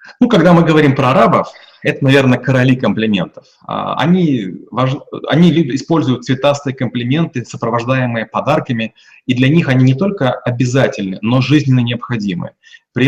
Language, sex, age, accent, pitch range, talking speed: Russian, male, 30-49, native, 120-150 Hz, 135 wpm